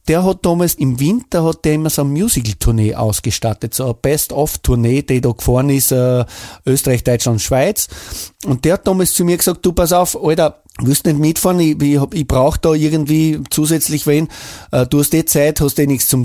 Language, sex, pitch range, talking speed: German, male, 130-165 Hz, 190 wpm